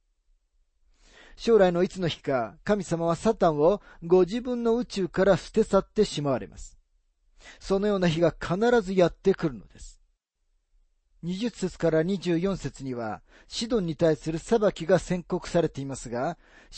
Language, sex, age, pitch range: Japanese, male, 40-59, 130-195 Hz